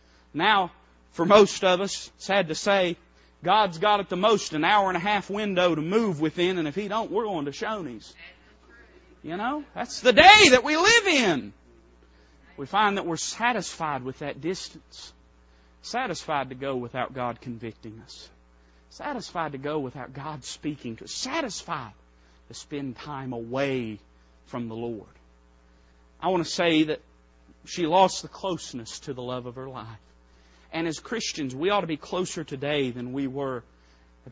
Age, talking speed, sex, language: 40-59, 170 wpm, male, English